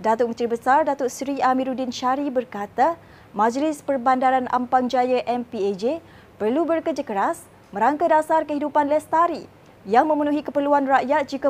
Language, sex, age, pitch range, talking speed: Malay, female, 20-39, 245-295 Hz, 130 wpm